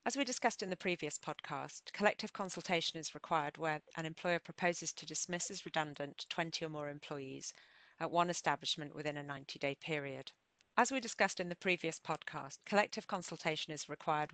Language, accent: English, British